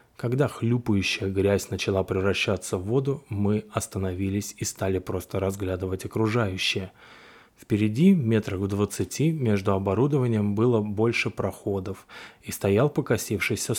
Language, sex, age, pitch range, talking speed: Russian, male, 20-39, 100-120 Hz, 115 wpm